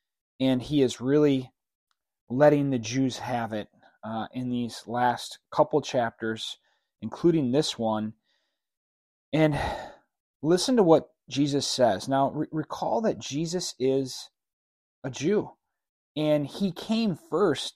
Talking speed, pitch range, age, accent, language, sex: 120 wpm, 120-150 Hz, 30-49, American, English, male